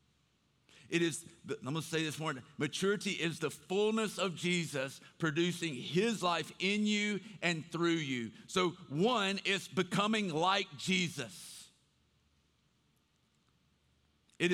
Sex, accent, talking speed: male, American, 120 wpm